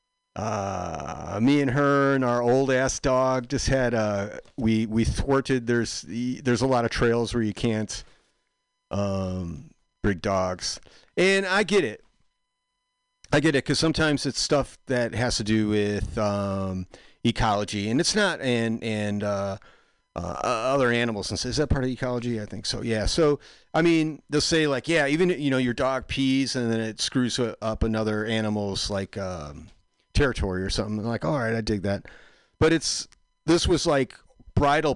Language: English